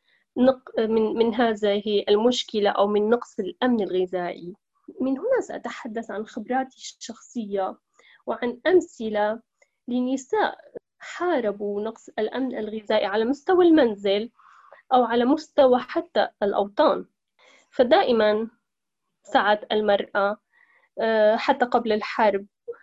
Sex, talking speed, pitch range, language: female, 90 wpm, 205-265 Hz, Arabic